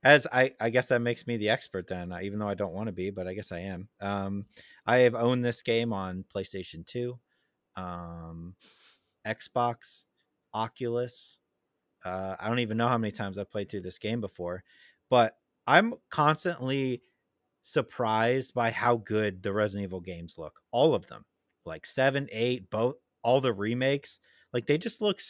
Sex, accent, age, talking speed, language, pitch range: male, American, 30-49, 180 wpm, English, 95-120 Hz